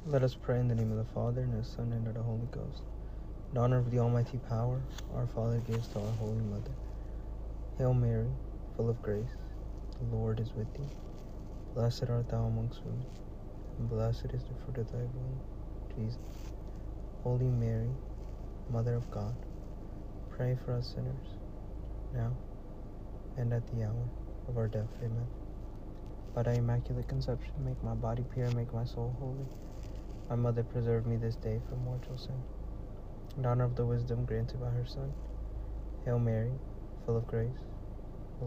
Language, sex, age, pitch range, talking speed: English, male, 30-49, 105-120 Hz, 170 wpm